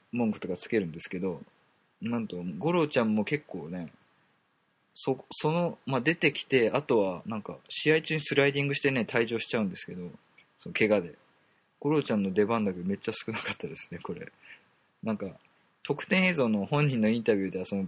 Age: 20-39